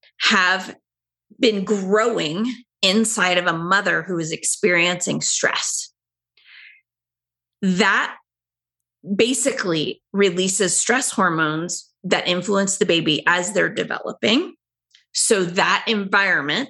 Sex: female